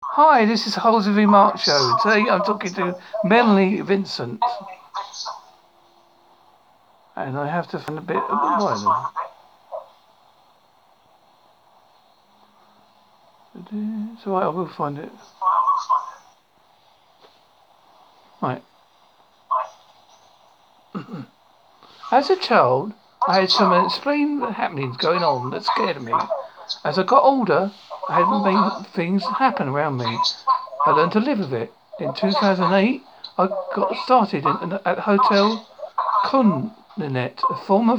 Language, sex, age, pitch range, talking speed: English, male, 60-79, 190-260 Hz, 105 wpm